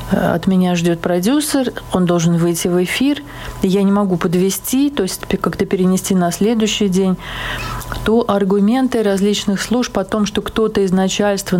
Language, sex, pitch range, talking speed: Russian, female, 180-220 Hz, 155 wpm